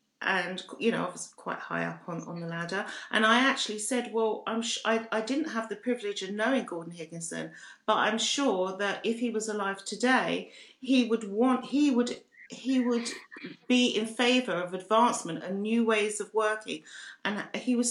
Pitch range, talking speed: 215-255 Hz, 195 wpm